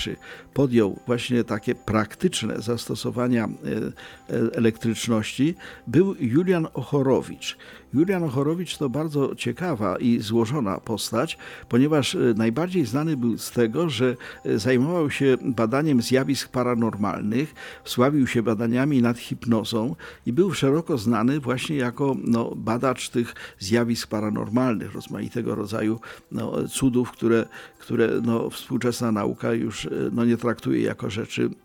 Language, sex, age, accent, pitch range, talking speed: Polish, male, 50-69, native, 115-150 Hz, 105 wpm